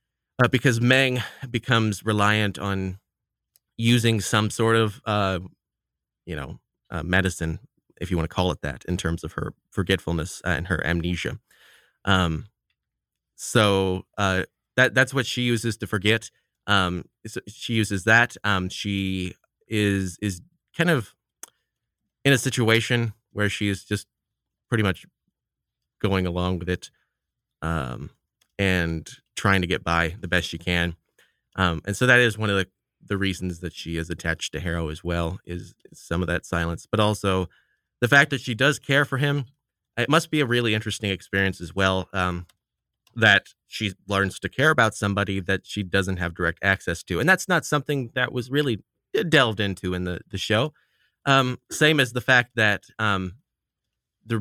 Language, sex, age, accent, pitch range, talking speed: English, male, 30-49, American, 90-120 Hz, 170 wpm